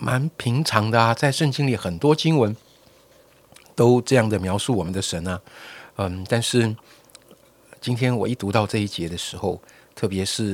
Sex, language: male, Chinese